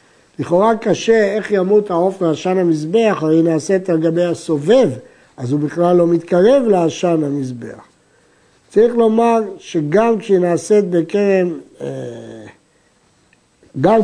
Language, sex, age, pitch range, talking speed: Hebrew, male, 60-79, 165-220 Hz, 115 wpm